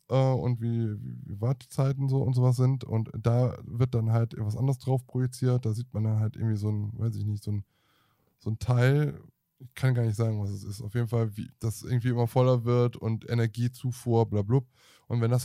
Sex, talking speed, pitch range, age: male, 235 wpm, 110-130 Hz, 20-39